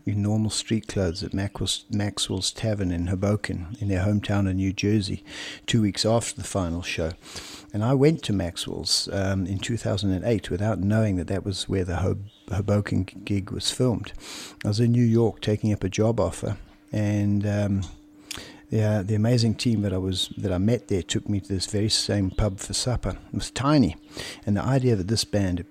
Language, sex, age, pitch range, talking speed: English, male, 60-79, 95-110 Hz, 185 wpm